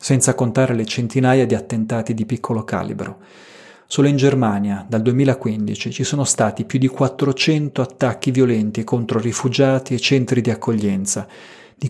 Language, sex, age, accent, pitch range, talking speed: Italian, male, 30-49, native, 115-135 Hz, 145 wpm